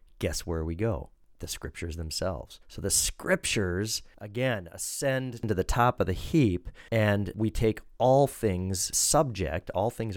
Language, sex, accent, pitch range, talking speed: English, male, American, 80-110 Hz, 155 wpm